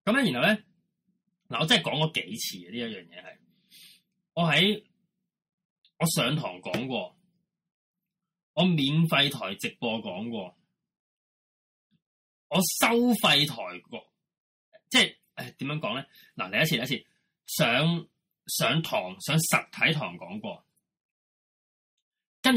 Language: Chinese